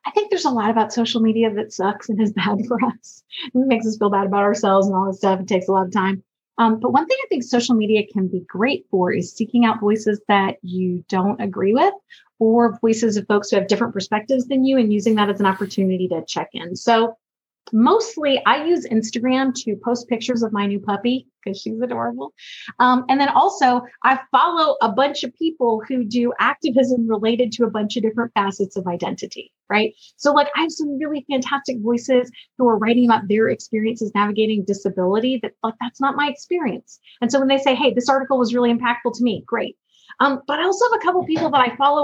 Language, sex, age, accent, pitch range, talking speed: English, female, 30-49, American, 210-270 Hz, 225 wpm